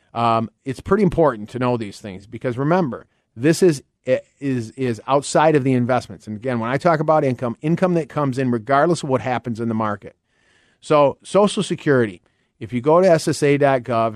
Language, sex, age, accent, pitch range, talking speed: English, male, 40-59, American, 115-145 Hz, 185 wpm